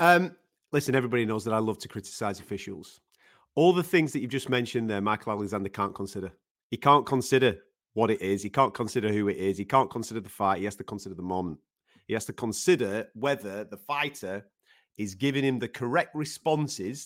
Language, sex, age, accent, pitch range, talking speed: English, male, 30-49, British, 100-140 Hz, 205 wpm